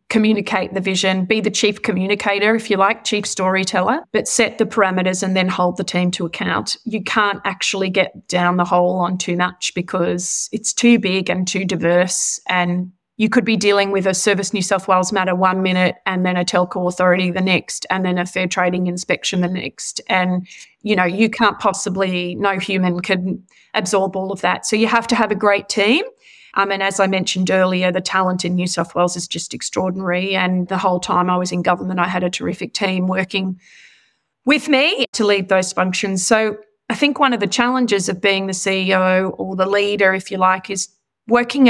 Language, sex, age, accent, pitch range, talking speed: English, female, 30-49, Australian, 185-210 Hz, 205 wpm